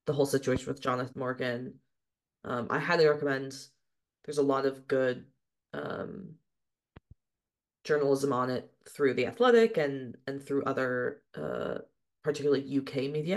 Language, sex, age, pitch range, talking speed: English, female, 20-39, 130-145 Hz, 135 wpm